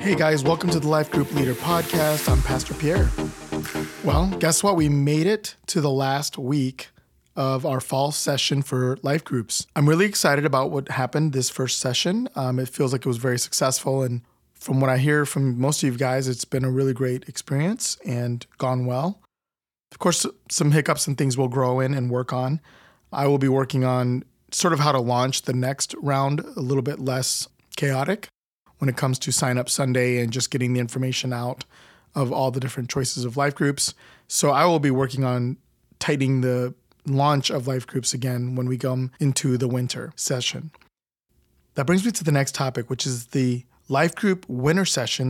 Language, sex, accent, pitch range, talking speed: English, male, American, 125-150 Hz, 200 wpm